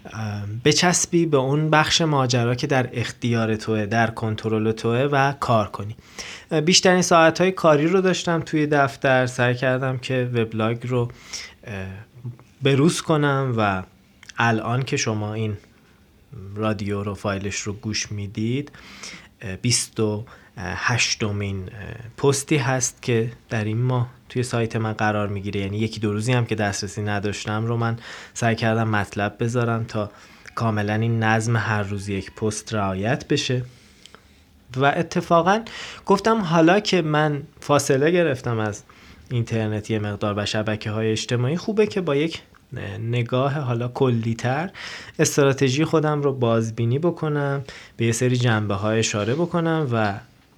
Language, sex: Persian, male